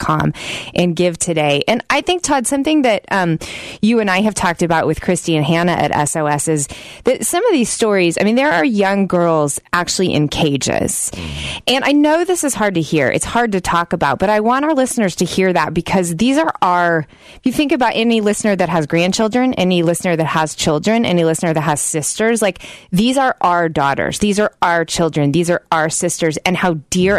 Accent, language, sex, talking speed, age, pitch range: American, English, female, 215 wpm, 20-39, 160-205 Hz